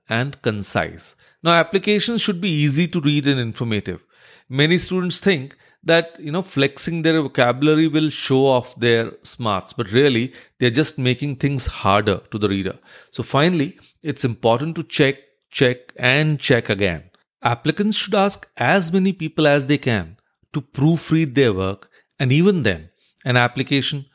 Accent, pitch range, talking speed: Indian, 115-165 Hz, 155 wpm